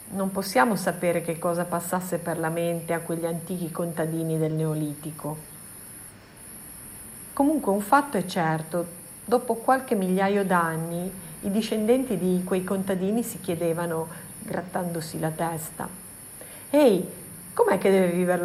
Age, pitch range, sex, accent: 50-69, 170-215 Hz, female, native